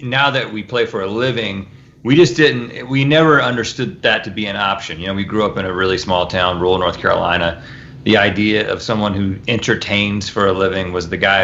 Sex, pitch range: male, 100-130 Hz